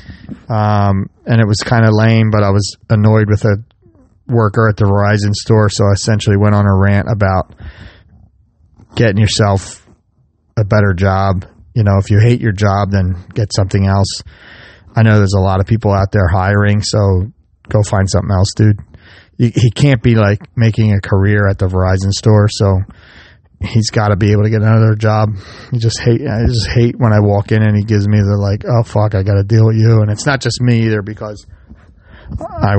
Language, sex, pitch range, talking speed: English, male, 100-115 Hz, 200 wpm